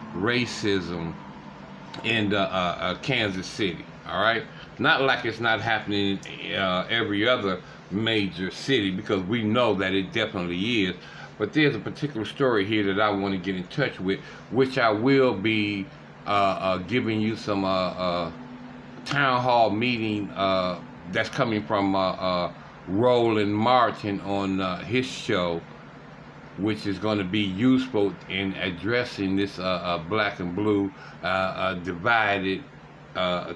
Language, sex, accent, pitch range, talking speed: English, male, American, 95-115 Hz, 150 wpm